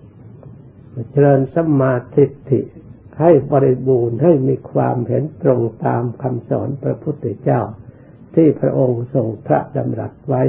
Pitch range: 120-150 Hz